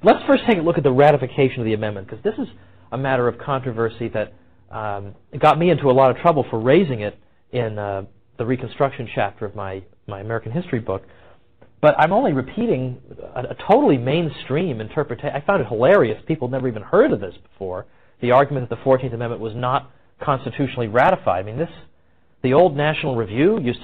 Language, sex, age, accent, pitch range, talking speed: English, male, 40-59, American, 110-145 Hz, 200 wpm